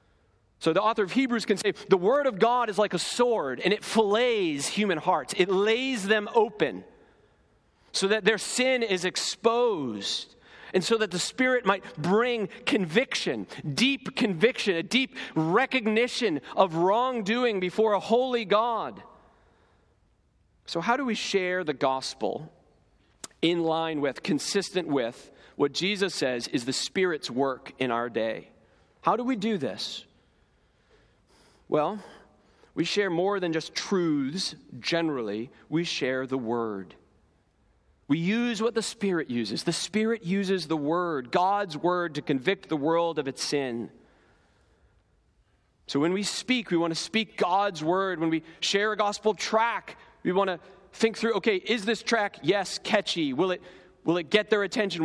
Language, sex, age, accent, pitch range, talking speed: English, male, 40-59, American, 160-225 Hz, 155 wpm